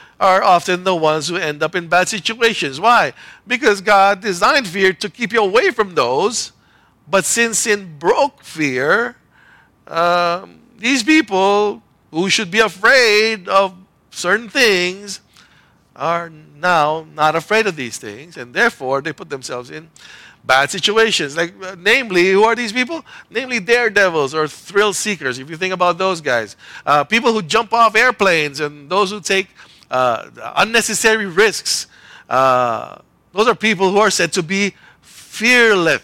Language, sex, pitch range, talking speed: English, male, 150-215 Hz, 155 wpm